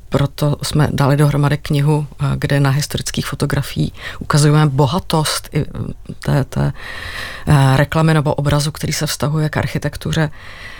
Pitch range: 140-155 Hz